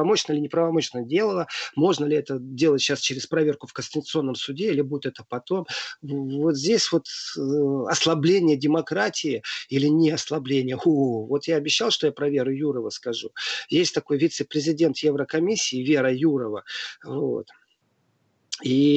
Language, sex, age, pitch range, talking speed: Russian, male, 40-59, 135-165 Hz, 135 wpm